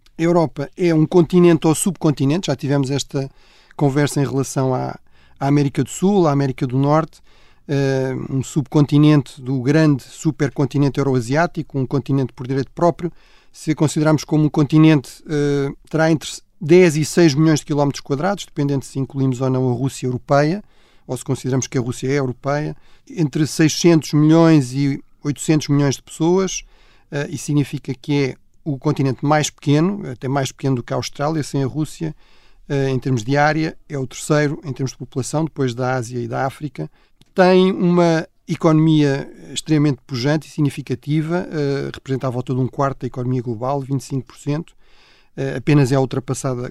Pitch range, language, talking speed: 135-155 Hz, Portuguese, 160 wpm